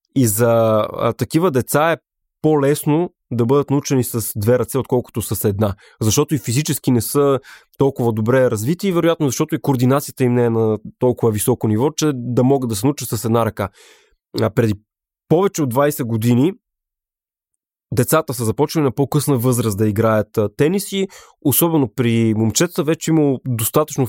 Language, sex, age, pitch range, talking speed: Bulgarian, male, 20-39, 120-155 Hz, 160 wpm